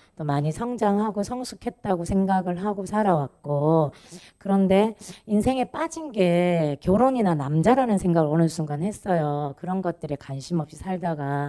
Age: 30-49